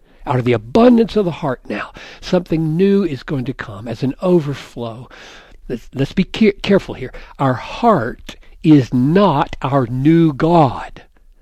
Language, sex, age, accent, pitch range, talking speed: English, male, 60-79, American, 120-160 Hz, 155 wpm